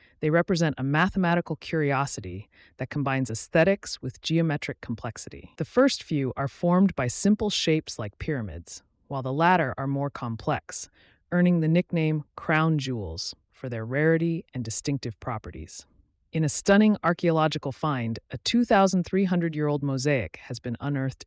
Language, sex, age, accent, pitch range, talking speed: English, female, 30-49, American, 120-165 Hz, 140 wpm